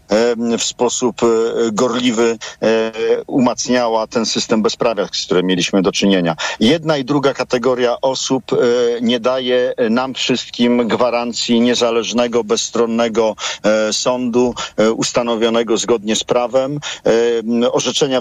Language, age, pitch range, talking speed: Polish, 50-69, 115-135 Hz, 100 wpm